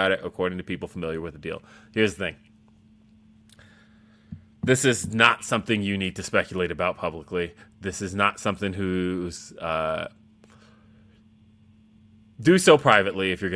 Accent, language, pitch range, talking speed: American, English, 90-110 Hz, 140 wpm